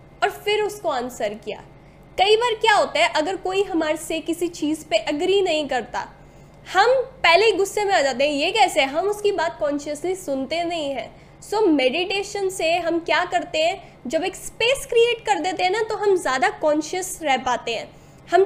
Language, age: Hindi, 10-29